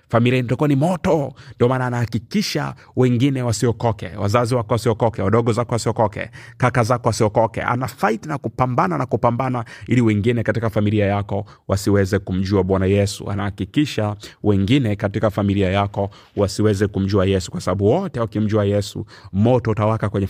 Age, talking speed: 30-49, 140 wpm